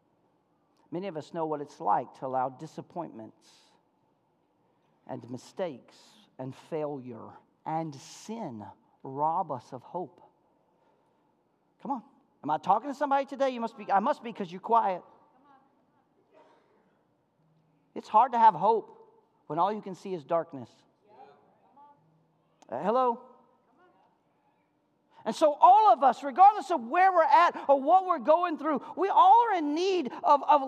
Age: 50-69